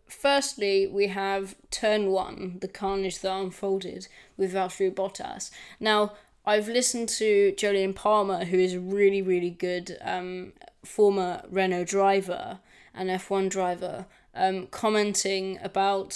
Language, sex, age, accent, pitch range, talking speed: English, female, 20-39, British, 190-210 Hz, 125 wpm